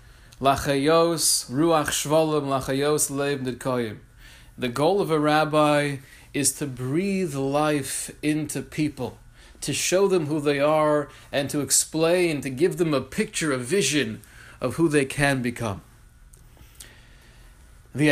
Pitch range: 125-150 Hz